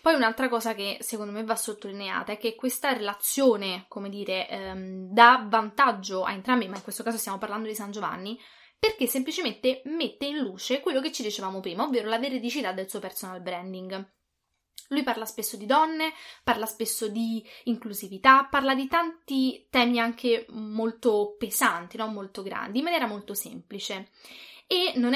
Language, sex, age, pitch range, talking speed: English, female, 20-39, 205-250 Hz, 165 wpm